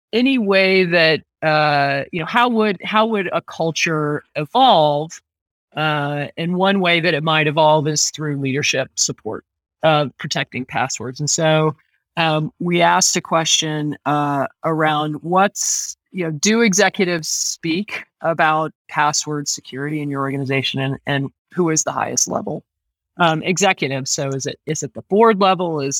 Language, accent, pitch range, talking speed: English, American, 140-170 Hz, 155 wpm